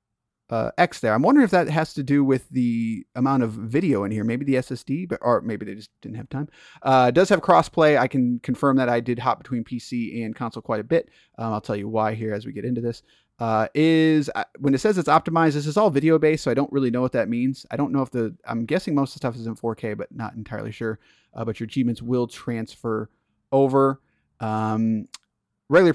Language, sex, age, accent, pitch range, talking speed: English, male, 30-49, American, 115-145 Hz, 245 wpm